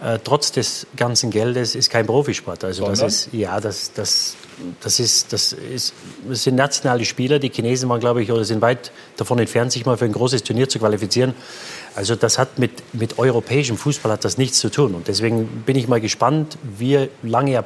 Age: 30-49